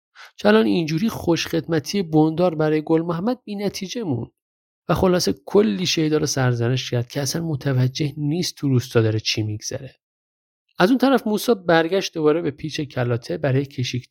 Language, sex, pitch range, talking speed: Persian, male, 120-165 Hz, 155 wpm